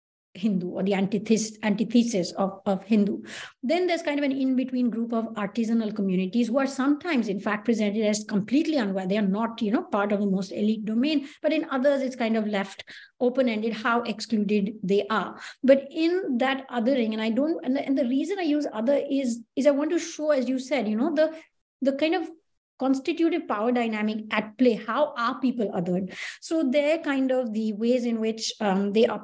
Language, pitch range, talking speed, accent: English, 215-275 Hz, 205 wpm, Indian